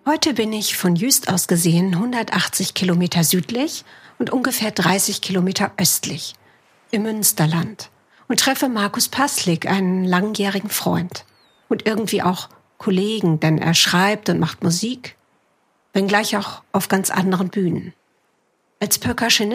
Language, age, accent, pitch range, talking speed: German, 50-69, German, 175-215 Hz, 130 wpm